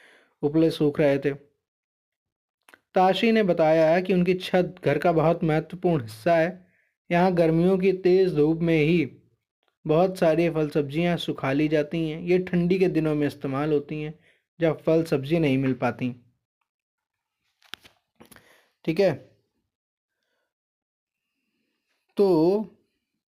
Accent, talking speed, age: native, 125 wpm, 20-39